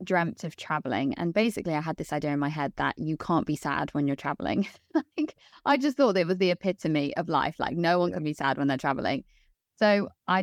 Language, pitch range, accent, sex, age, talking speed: English, 150-190 Hz, British, female, 20-39, 235 wpm